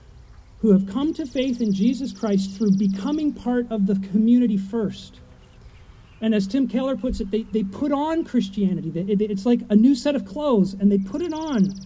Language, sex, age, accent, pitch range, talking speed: English, male, 40-59, American, 195-270 Hz, 185 wpm